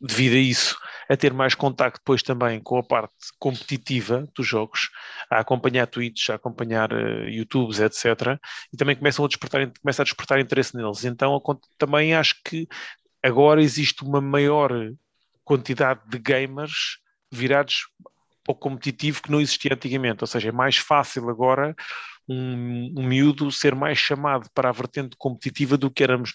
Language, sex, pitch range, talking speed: English, male, 120-140 Hz, 160 wpm